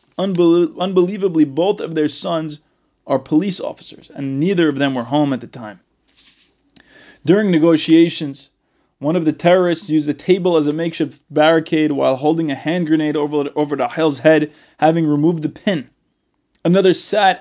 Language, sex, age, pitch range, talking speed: English, male, 20-39, 145-180 Hz, 160 wpm